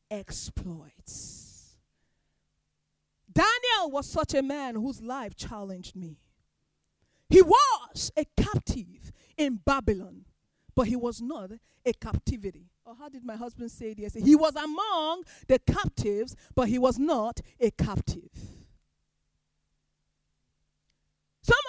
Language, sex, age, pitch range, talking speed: English, female, 40-59, 230-335 Hz, 115 wpm